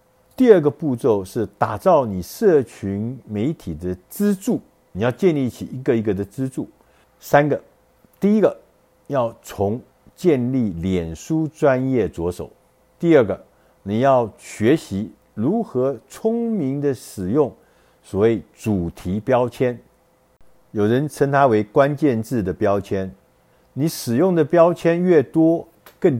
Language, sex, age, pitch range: Chinese, male, 50-69, 100-155 Hz